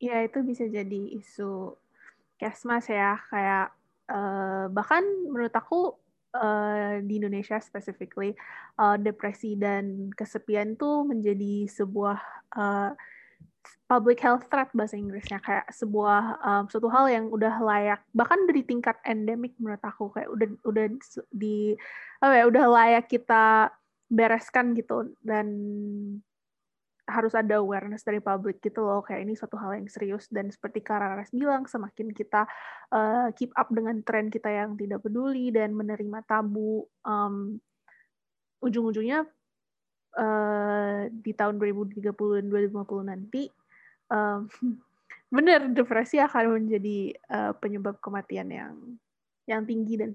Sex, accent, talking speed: female, native, 130 wpm